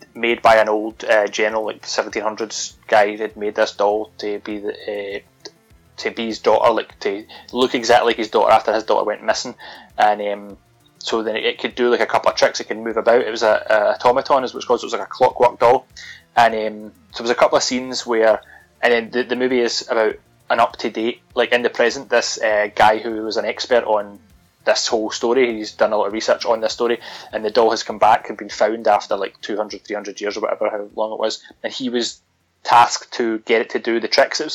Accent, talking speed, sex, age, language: British, 245 wpm, male, 20-39, English